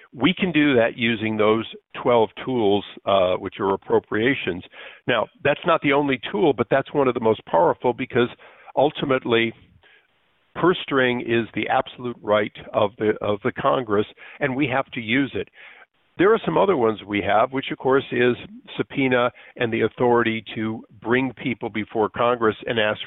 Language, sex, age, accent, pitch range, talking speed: English, male, 50-69, American, 105-130 Hz, 170 wpm